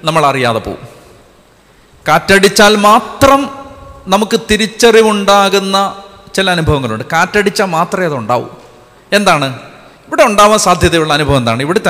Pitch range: 140-190 Hz